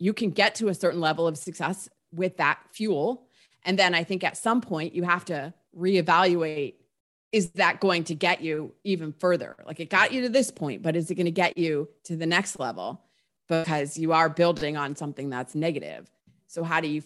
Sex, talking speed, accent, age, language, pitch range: female, 215 wpm, American, 30-49, English, 160-200 Hz